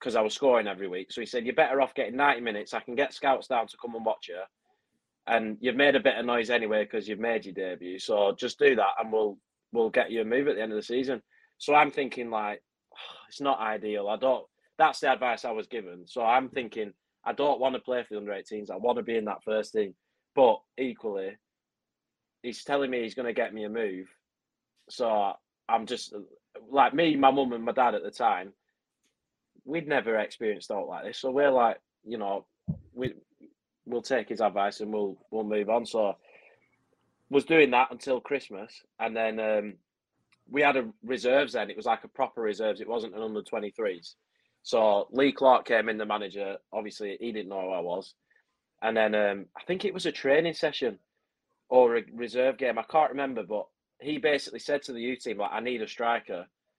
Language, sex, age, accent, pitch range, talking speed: English, male, 20-39, British, 105-135 Hz, 215 wpm